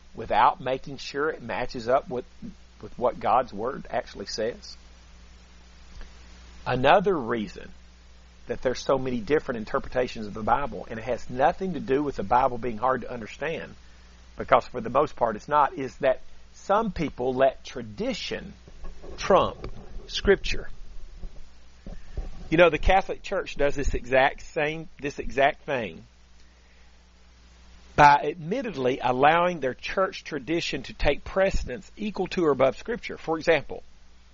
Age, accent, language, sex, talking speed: 40-59, American, English, male, 140 wpm